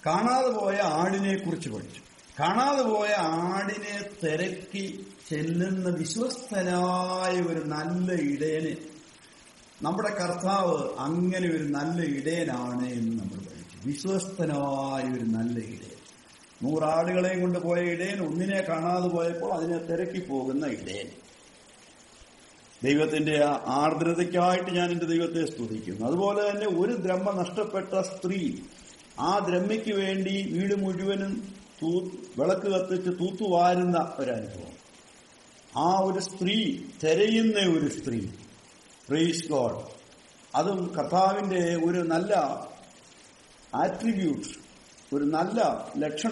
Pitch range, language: 155-195 Hz, English